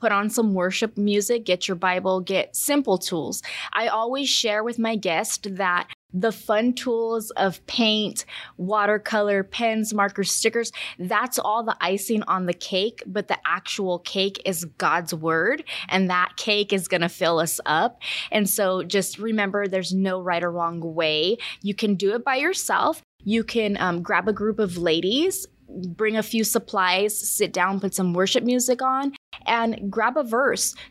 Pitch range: 190-230 Hz